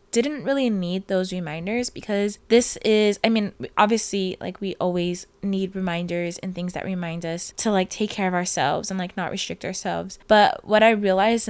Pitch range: 185-210 Hz